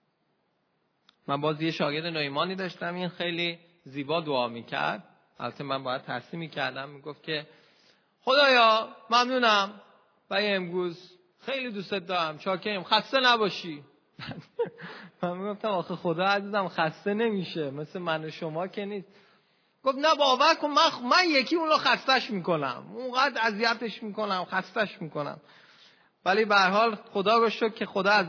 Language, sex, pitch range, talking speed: Persian, male, 165-230 Hz, 145 wpm